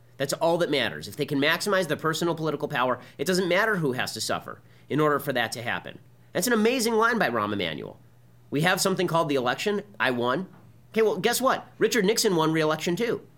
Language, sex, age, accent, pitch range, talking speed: English, male, 30-49, American, 120-185 Hz, 220 wpm